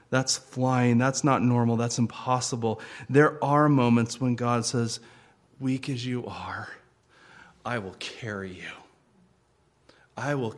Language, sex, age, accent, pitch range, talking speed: English, male, 40-59, American, 110-135 Hz, 130 wpm